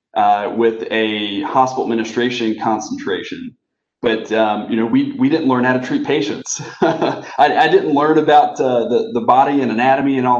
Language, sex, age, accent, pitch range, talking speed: English, male, 30-49, American, 110-140 Hz, 180 wpm